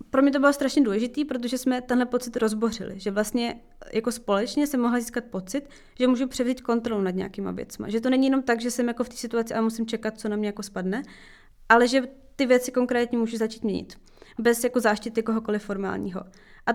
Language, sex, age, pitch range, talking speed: Czech, female, 20-39, 215-255 Hz, 210 wpm